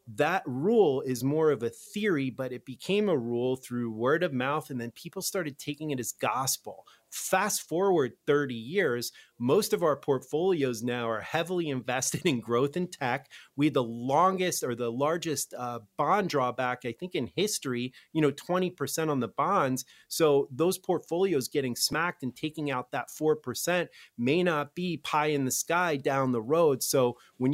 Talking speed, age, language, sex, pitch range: 175 wpm, 30-49, English, male, 125-155 Hz